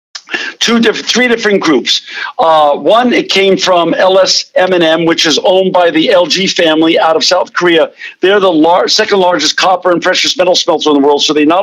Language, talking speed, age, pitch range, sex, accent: English, 200 wpm, 50-69, 165-195 Hz, male, American